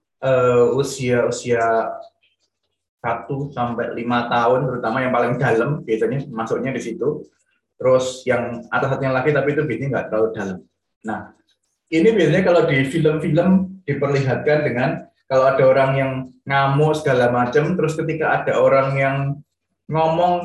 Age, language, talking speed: 20-39, Indonesian, 135 wpm